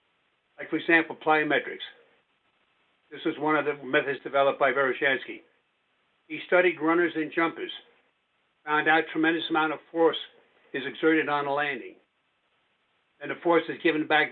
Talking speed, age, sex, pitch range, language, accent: 150 wpm, 60-79, male, 150-200 Hz, English, American